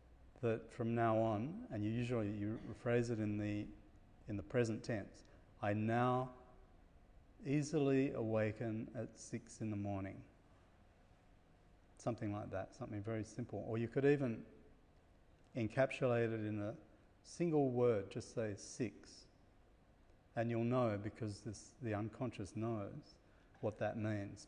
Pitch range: 100-120 Hz